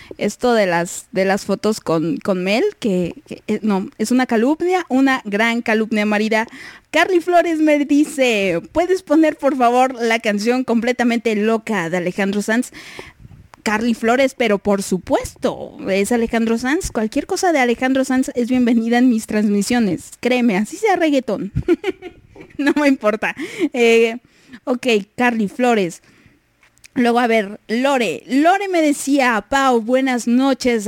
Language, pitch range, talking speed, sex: Italian, 210-270 Hz, 140 wpm, female